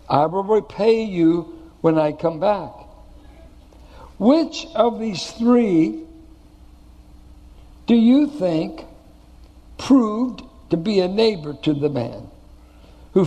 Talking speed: 110 wpm